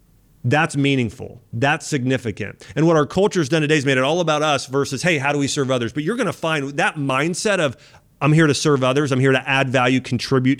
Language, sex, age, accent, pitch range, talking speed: English, male, 40-59, American, 130-170 Hz, 240 wpm